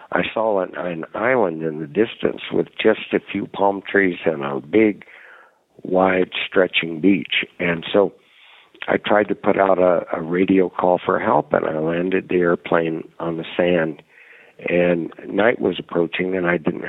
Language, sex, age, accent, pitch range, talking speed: English, male, 60-79, American, 80-95 Hz, 170 wpm